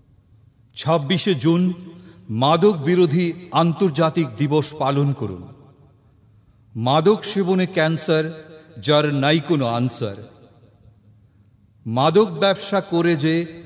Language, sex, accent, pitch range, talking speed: Bengali, male, native, 120-170 Hz, 55 wpm